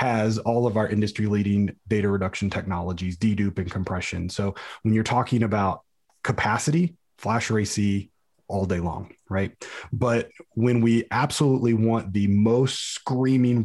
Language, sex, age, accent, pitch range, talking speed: English, male, 30-49, American, 100-120 Hz, 140 wpm